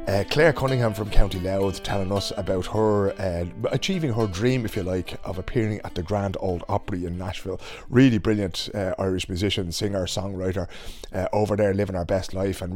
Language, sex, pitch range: English, male, 95-125 Hz